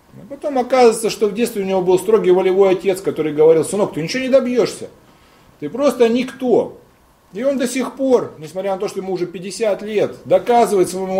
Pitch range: 140-230 Hz